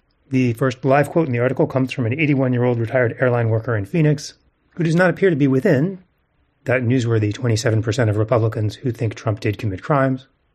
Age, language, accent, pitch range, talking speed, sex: 30-49, English, American, 115-145 Hz, 195 wpm, male